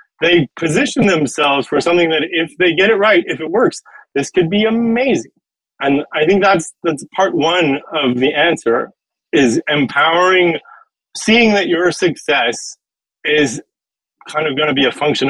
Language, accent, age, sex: English, American, 20-39, male